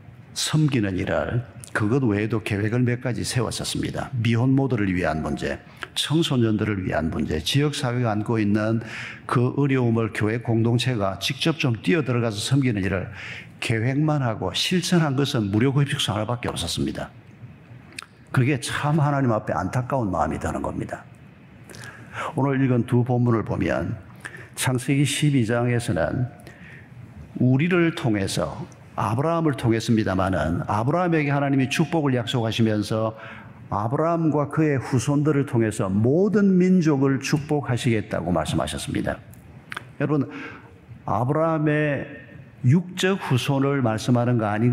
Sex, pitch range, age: male, 115-150 Hz, 50-69